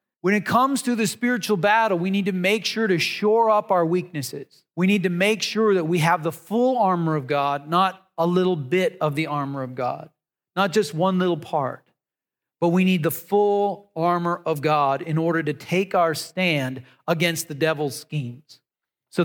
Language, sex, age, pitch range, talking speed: English, male, 40-59, 155-205 Hz, 195 wpm